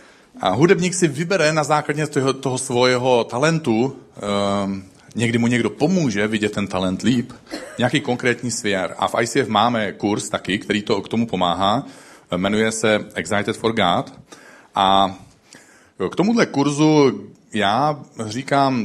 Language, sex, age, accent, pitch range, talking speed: Czech, male, 40-59, native, 105-140 Hz, 140 wpm